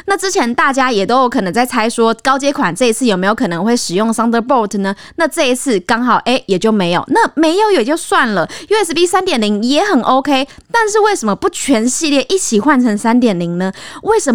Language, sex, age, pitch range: Chinese, female, 20-39, 225-325 Hz